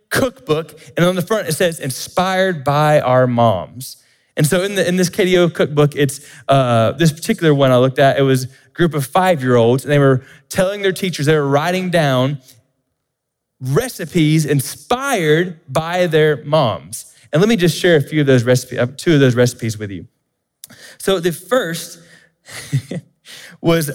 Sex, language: male, English